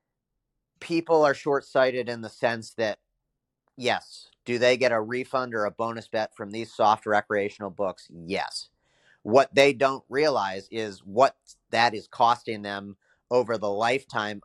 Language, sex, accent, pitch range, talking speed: English, male, American, 105-125 Hz, 150 wpm